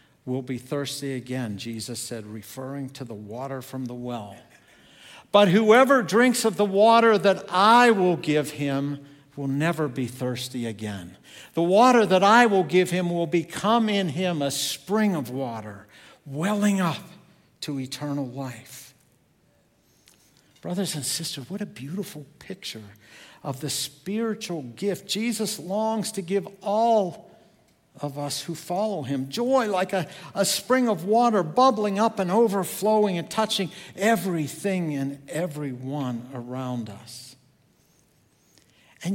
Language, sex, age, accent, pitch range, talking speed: English, male, 60-79, American, 130-195 Hz, 135 wpm